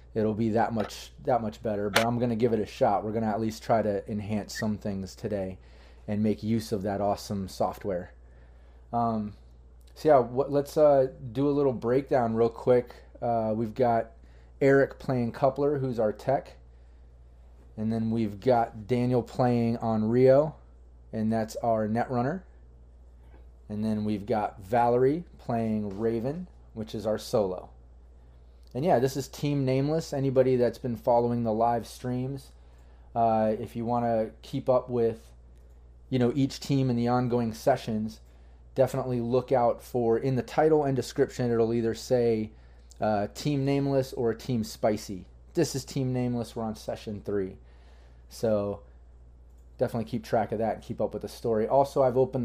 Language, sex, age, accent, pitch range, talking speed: English, male, 30-49, American, 95-125 Hz, 165 wpm